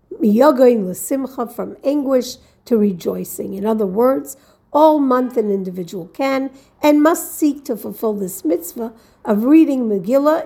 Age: 50-69